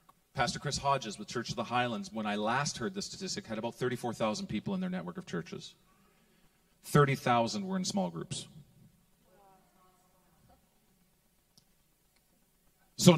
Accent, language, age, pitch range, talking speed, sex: American, English, 40-59, 145-190 Hz, 130 wpm, male